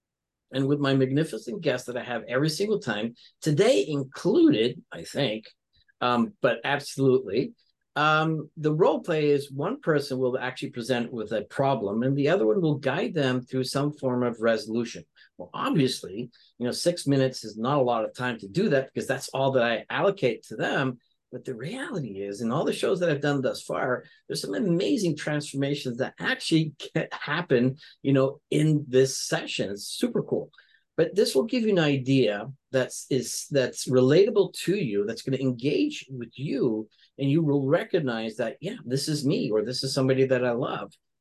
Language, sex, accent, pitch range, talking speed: English, male, American, 125-150 Hz, 185 wpm